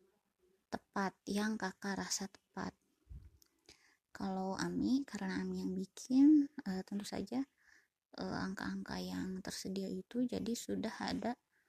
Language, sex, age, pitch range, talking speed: Indonesian, female, 20-39, 195-250 Hz, 115 wpm